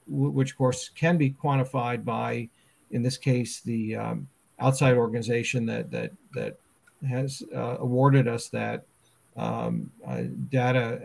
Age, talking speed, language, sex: 50-69, 135 wpm, English, male